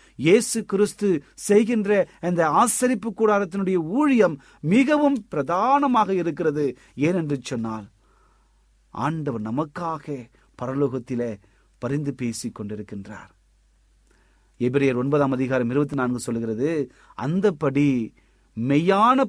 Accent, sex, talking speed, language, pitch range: native, male, 40 wpm, Tamil, 130-195 Hz